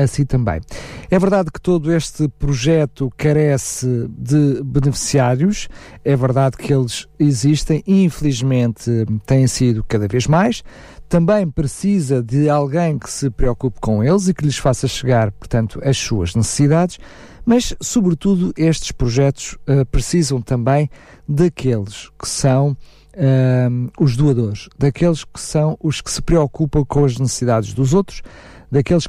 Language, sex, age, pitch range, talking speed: Portuguese, male, 50-69, 130-175 Hz, 140 wpm